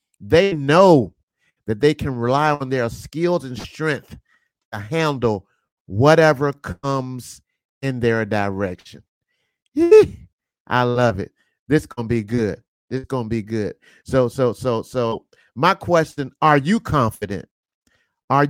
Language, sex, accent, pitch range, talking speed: English, male, American, 115-165 Hz, 140 wpm